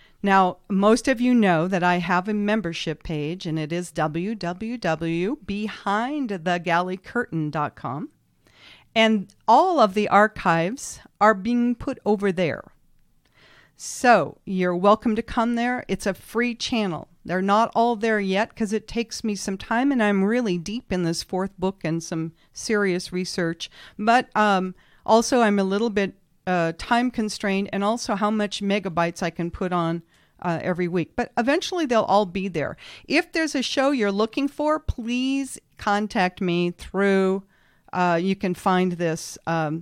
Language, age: English, 40-59